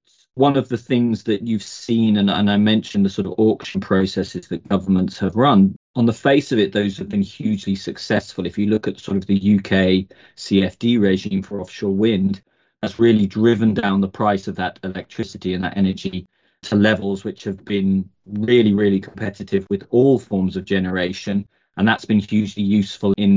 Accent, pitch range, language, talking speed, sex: British, 95-110 Hz, English, 190 wpm, male